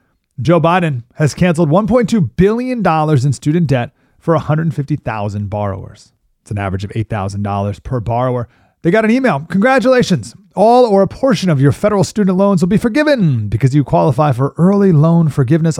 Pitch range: 115-170 Hz